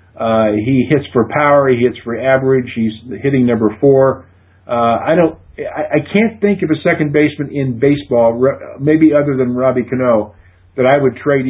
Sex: male